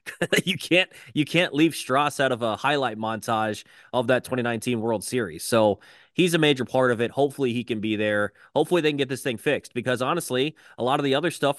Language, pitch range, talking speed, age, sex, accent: English, 110-140 Hz, 225 wpm, 20-39, male, American